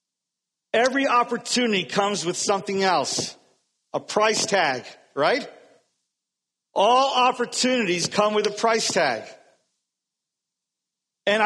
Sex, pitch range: male, 155-235 Hz